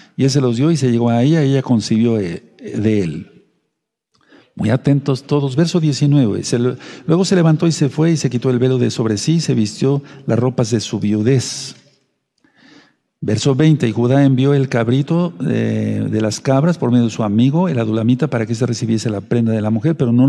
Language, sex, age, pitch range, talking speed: Spanish, male, 50-69, 120-145 Hz, 215 wpm